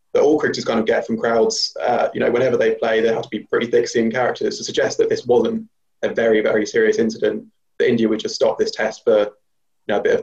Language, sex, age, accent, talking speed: English, male, 20-39, British, 265 wpm